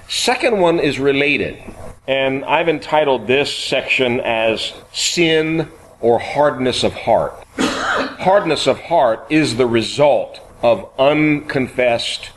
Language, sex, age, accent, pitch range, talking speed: English, male, 40-59, American, 110-155 Hz, 110 wpm